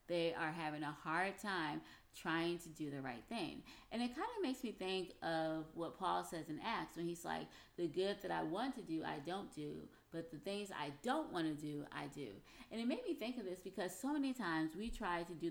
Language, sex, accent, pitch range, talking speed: English, female, American, 160-205 Hz, 245 wpm